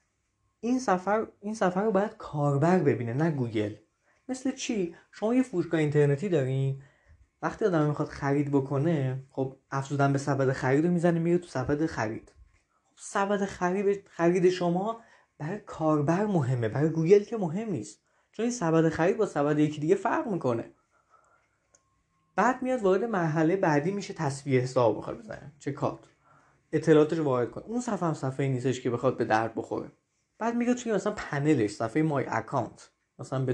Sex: male